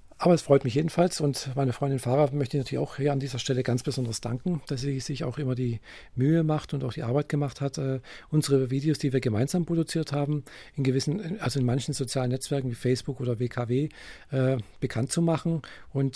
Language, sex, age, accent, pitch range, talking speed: German, male, 50-69, German, 125-150 Hz, 215 wpm